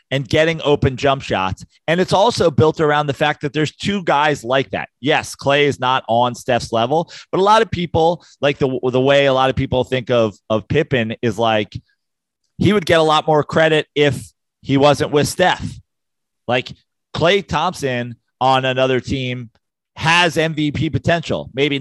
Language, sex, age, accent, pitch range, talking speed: English, male, 30-49, American, 120-165 Hz, 180 wpm